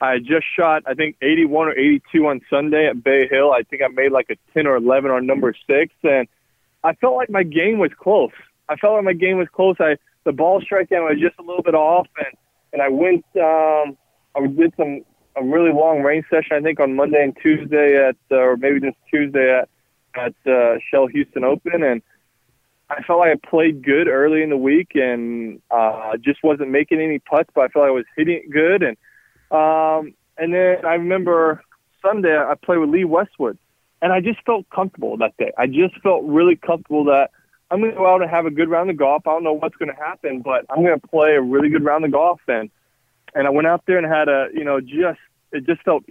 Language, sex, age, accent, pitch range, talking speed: English, male, 20-39, American, 135-170 Hz, 230 wpm